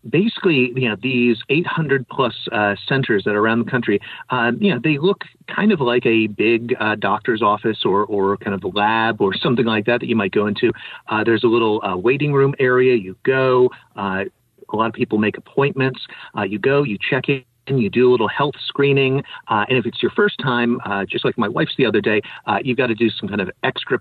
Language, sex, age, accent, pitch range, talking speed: English, male, 40-59, American, 110-140 Hz, 235 wpm